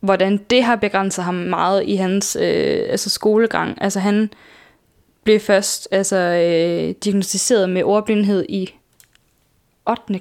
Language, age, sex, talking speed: Danish, 10-29, female, 130 wpm